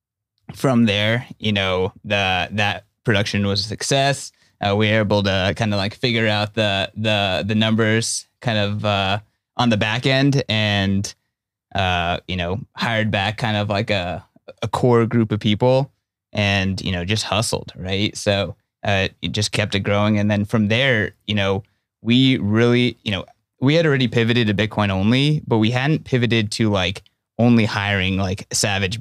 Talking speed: 180 wpm